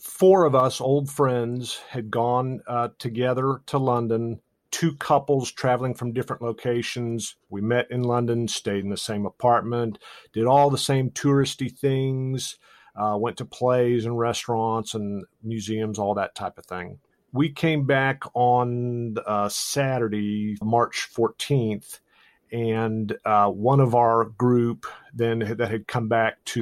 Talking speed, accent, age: 145 wpm, American, 50-69